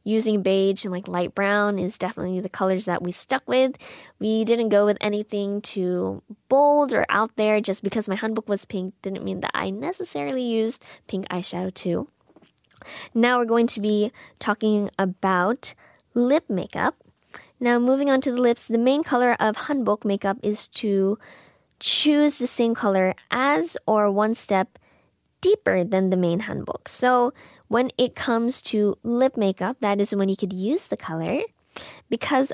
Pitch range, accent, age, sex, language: 195-245 Hz, American, 20-39, female, Korean